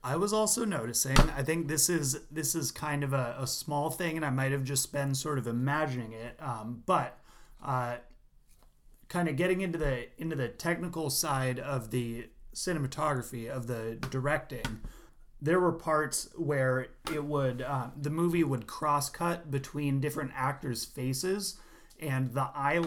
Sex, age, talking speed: male, 30-49, 165 wpm